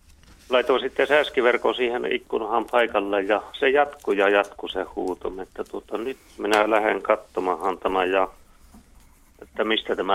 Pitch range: 80-115 Hz